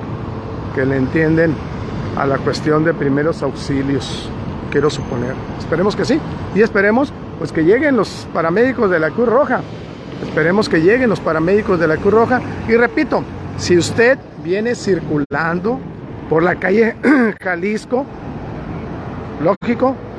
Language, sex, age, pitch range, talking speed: Spanish, male, 50-69, 145-205 Hz, 135 wpm